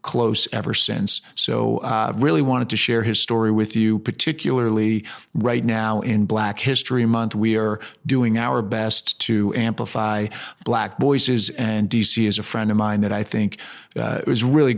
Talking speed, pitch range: 180 wpm, 110-120 Hz